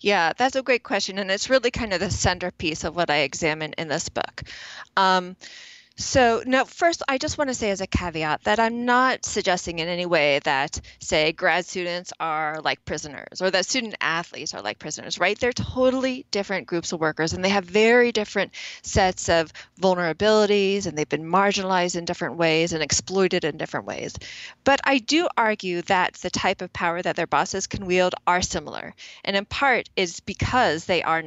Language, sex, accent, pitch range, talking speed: English, female, American, 170-235 Hz, 190 wpm